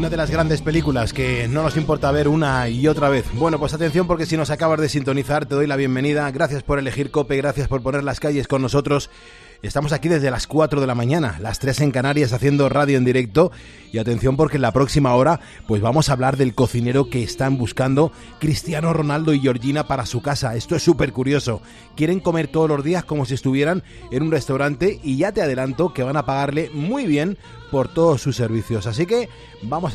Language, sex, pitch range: Spanish, male, 130-155 Hz